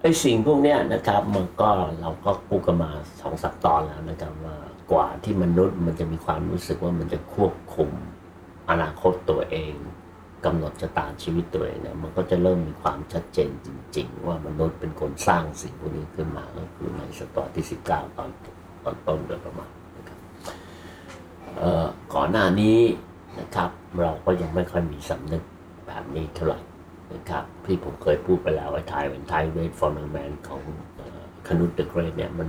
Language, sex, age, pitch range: Thai, male, 60-79, 80-90 Hz